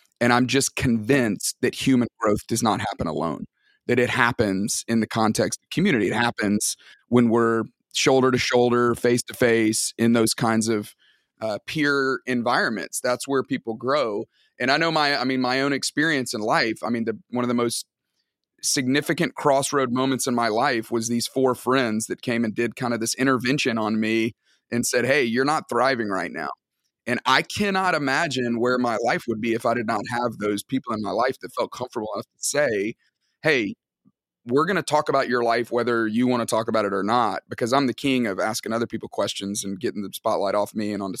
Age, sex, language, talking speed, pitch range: 30-49, male, English, 210 wpm, 115-130 Hz